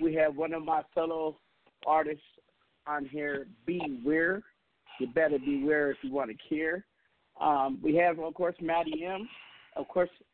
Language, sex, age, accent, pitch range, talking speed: English, male, 40-59, American, 160-215 Hz, 155 wpm